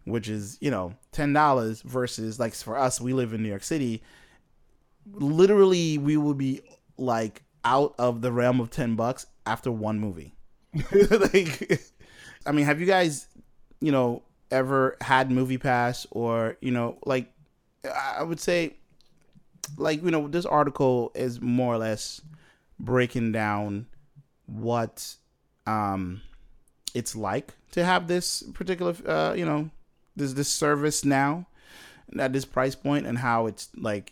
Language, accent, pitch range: English, American, 110-150 Hz